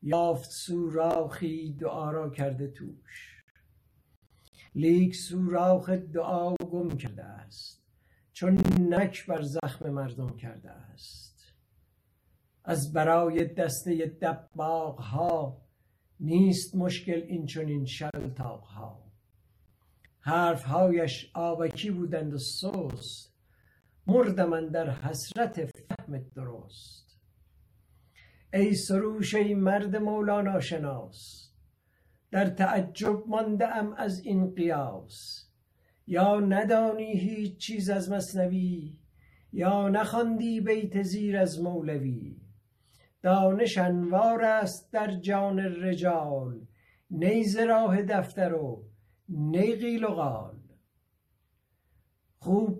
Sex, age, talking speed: male, 60-79, 90 wpm